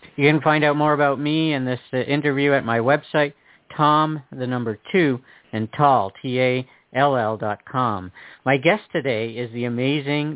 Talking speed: 180 wpm